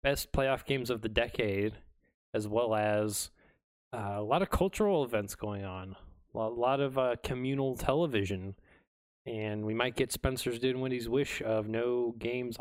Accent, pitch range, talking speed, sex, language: American, 110-145 Hz, 155 wpm, male, English